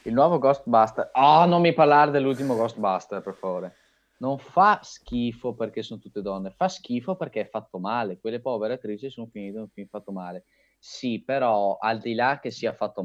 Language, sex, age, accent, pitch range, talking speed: Italian, male, 20-39, native, 95-115 Hz, 190 wpm